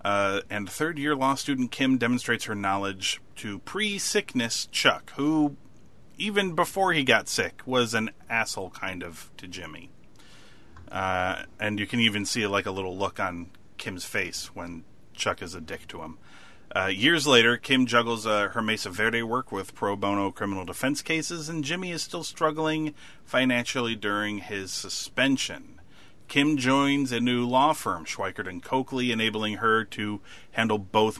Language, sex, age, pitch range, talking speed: English, male, 30-49, 100-135 Hz, 160 wpm